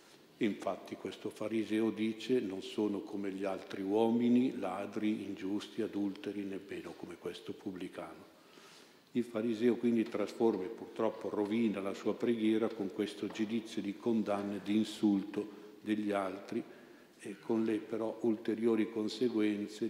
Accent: native